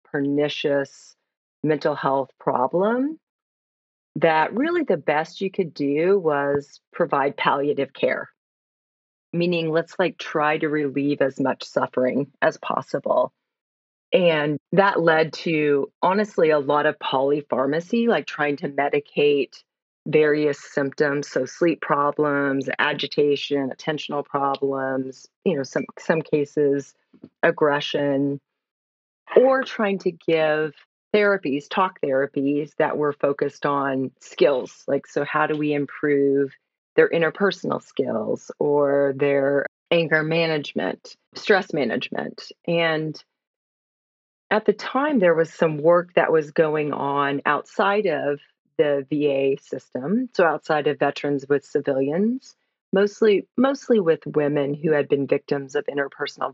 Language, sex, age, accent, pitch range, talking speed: English, female, 40-59, American, 140-170 Hz, 120 wpm